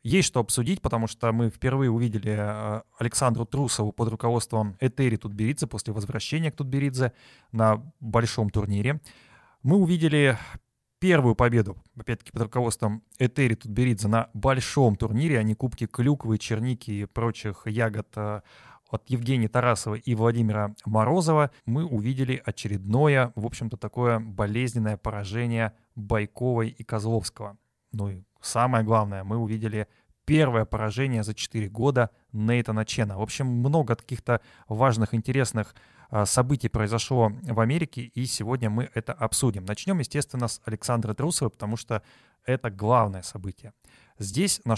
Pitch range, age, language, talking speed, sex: 110-130 Hz, 20-39, Russian, 130 wpm, male